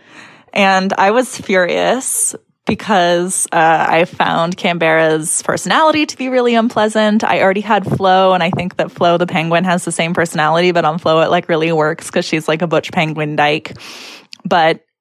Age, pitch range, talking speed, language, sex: 10-29, 170-205 Hz, 175 wpm, English, female